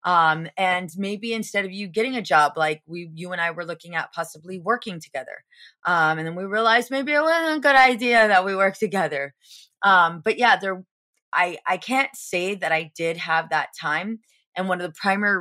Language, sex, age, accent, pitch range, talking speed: English, female, 30-49, American, 160-220 Hz, 210 wpm